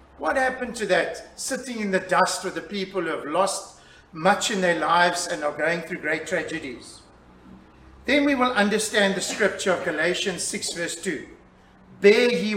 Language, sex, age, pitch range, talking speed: English, male, 50-69, 170-215 Hz, 175 wpm